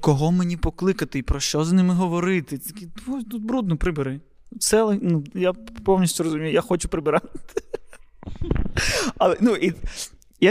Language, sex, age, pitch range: Ukrainian, male, 20-39, 160-195 Hz